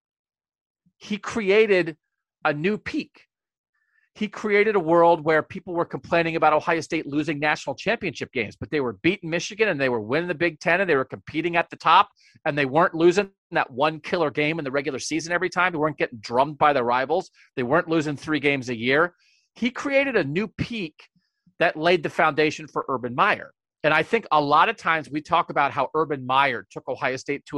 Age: 40-59